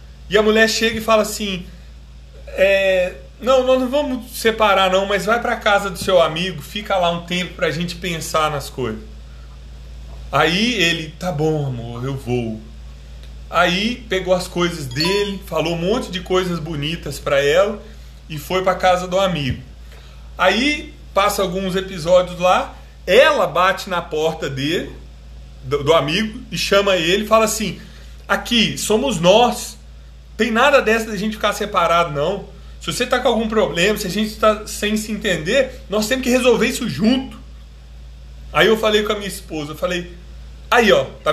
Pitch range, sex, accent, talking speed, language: 140-210 Hz, male, Brazilian, 170 wpm, Portuguese